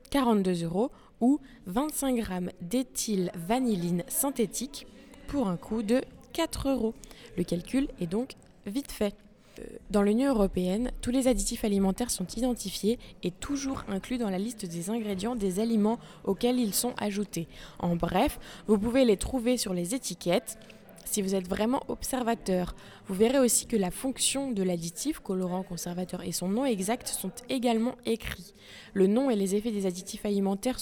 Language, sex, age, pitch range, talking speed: French, female, 20-39, 190-240 Hz, 160 wpm